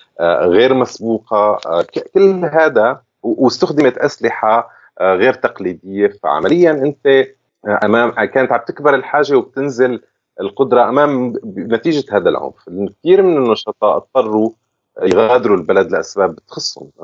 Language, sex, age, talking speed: Arabic, male, 30-49, 100 wpm